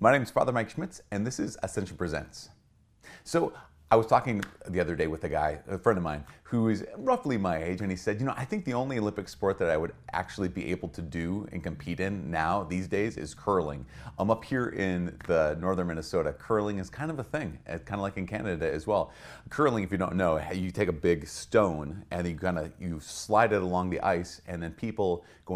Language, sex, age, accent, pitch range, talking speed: English, male, 30-49, American, 85-115 Hz, 230 wpm